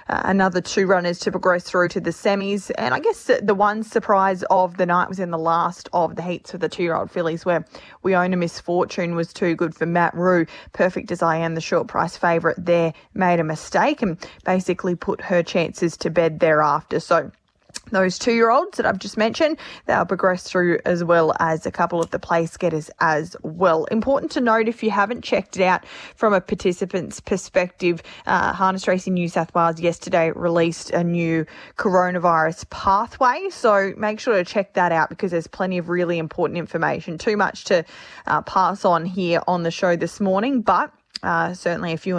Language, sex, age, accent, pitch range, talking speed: English, female, 20-39, Australian, 170-195 Hz, 200 wpm